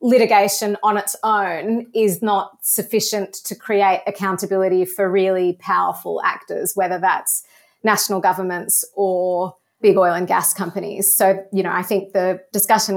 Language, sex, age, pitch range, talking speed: English, female, 30-49, 185-210 Hz, 145 wpm